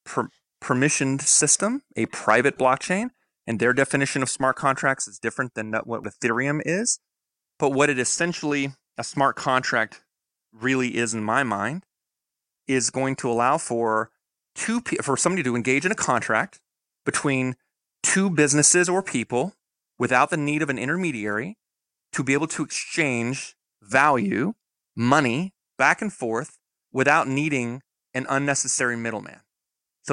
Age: 30-49